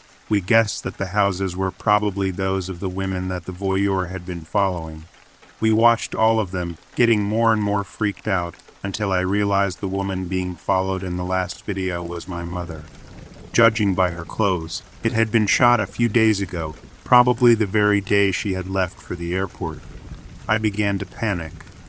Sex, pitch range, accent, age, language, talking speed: male, 95-105 Hz, American, 40-59, English, 185 wpm